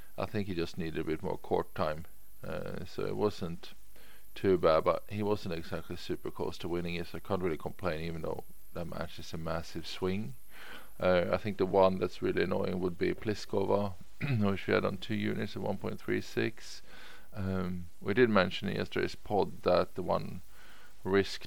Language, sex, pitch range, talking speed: English, male, 90-100 Hz, 185 wpm